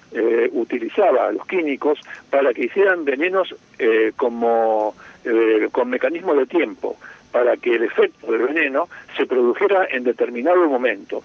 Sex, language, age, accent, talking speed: male, Spanish, 50-69, Argentinian, 145 wpm